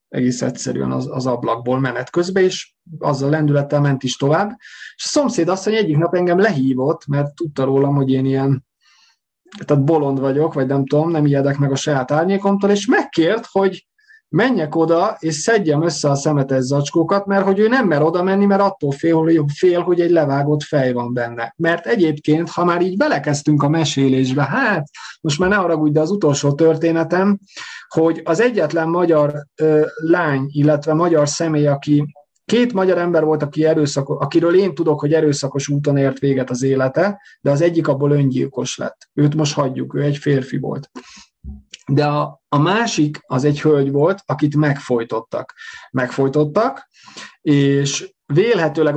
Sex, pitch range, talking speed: male, 140-170 Hz, 170 wpm